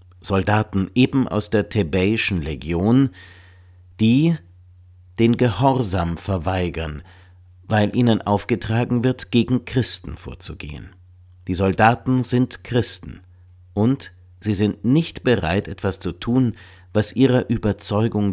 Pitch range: 90-115 Hz